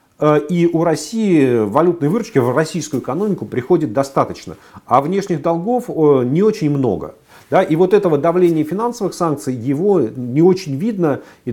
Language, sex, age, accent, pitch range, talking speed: Russian, male, 40-59, native, 130-175 Hz, 140 wpm